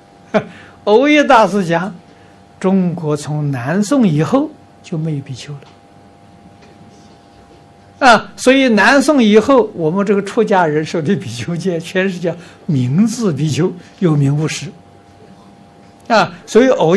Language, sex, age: Chinese, male, 60-79